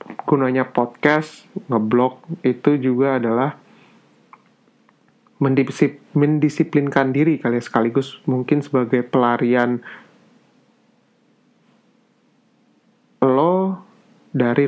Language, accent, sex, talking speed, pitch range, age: Indonesian, native, male, 65 wpm, 125-170 Hz, 30-49